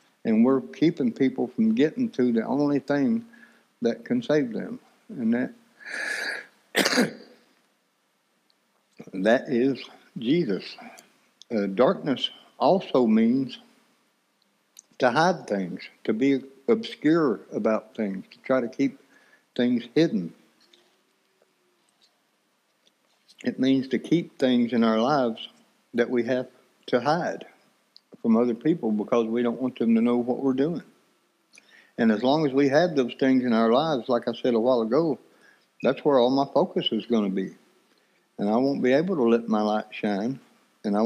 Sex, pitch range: male, 120-155 Hz